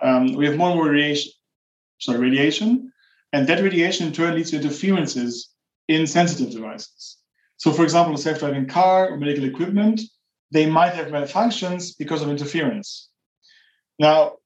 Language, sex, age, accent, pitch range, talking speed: English, male, 30-49, German, 145-180 Hz, 150 wpm